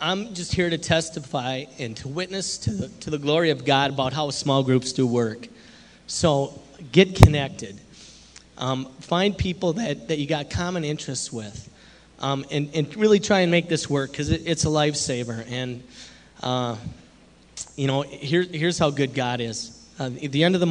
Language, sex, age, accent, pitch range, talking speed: English, male, 30-49, American, 125-150 Hz, 185 wpm